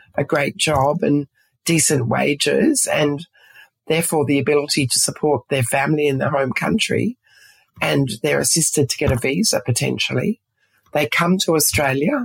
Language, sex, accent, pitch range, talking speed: English, female, Australian, 140-165 Hz, 145 wpm